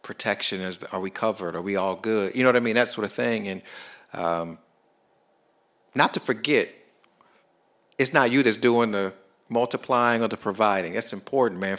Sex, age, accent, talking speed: male, 50-69, American, 185 wpm